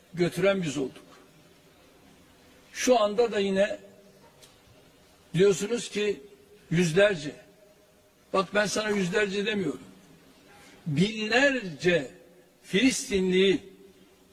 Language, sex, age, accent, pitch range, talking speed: Turkish, male, 60-79, native, 185-225 Hz, 70 wpm